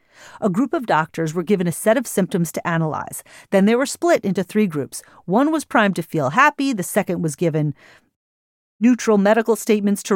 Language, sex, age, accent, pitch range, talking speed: English, female, 40-59, American, 170-235 Hz, 195 wpm